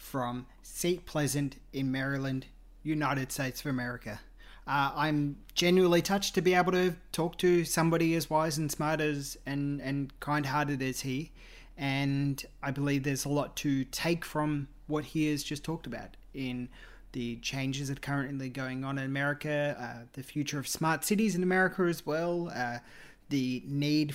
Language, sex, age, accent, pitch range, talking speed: English, male, 20-39, Australian, 130-155 Hz, 170 wpm